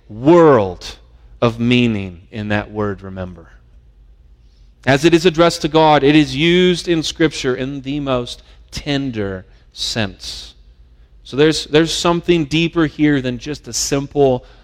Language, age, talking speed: English, 30-49, 135 wpm